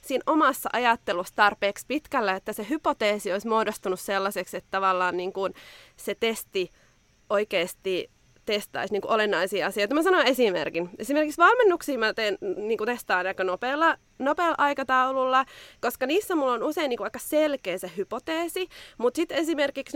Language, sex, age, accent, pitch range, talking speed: Finnish, female, 20-39, native, 200-280 Hz, 130 wpm